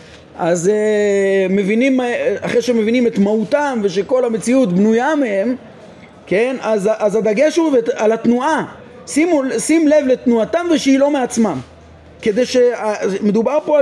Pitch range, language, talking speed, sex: 190-245 Hz, Hebrew, 115 wpm, male